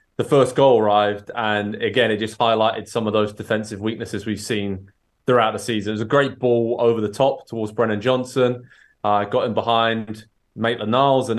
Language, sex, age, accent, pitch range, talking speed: English, male, 20-39, British, 110-125 Hz, 190 wpm